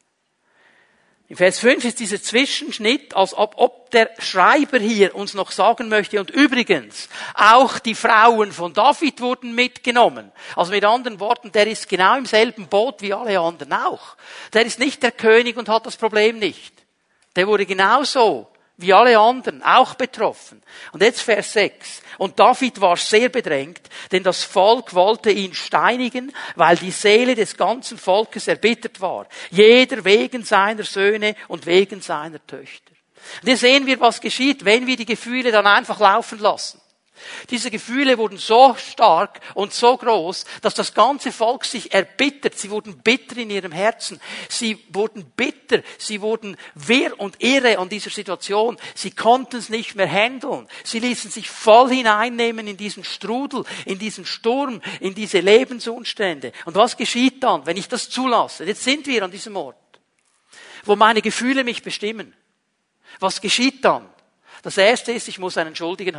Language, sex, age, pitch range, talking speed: German, male, 50-69, 200-245 Hz, 165 wpm